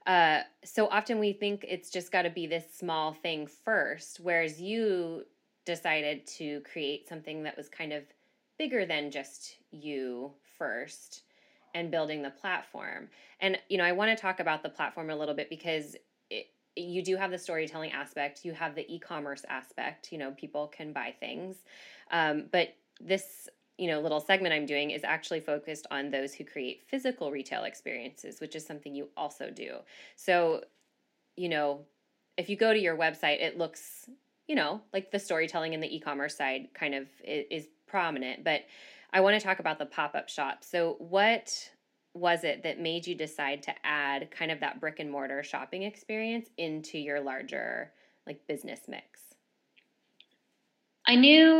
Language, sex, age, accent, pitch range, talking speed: English, female, 10-29, American, 150-190 Hz, 170 wpm